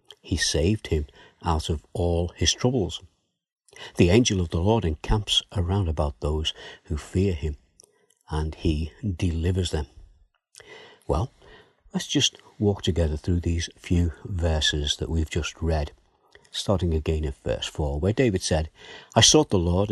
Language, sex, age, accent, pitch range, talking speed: English, male, 60-79, British, 80-105 Hz, 150 wpm